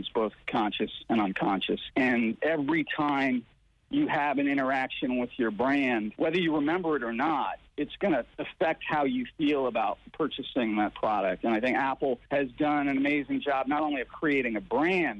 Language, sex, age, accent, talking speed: English, male, 50-69, American, 180 wpm